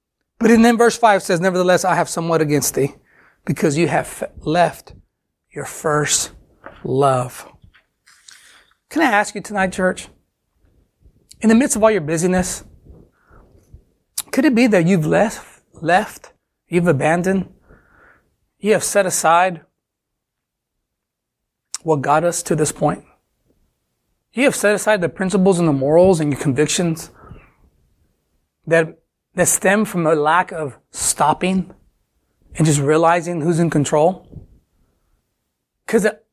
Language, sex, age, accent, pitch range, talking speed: English, male, 30-49, American, 155-205 Hz, 130 wpm